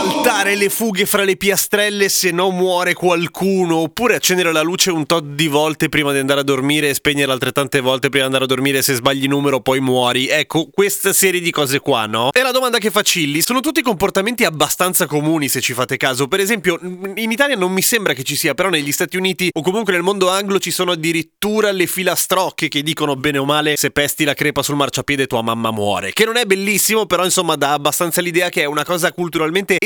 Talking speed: 225 wpm